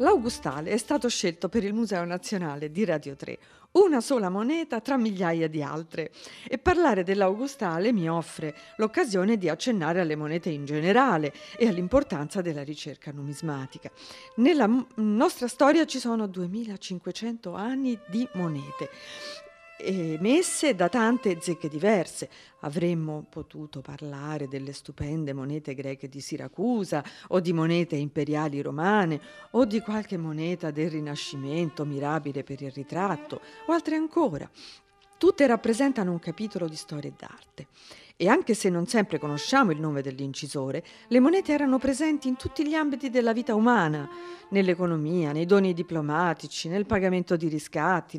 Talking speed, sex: 140 wpm, female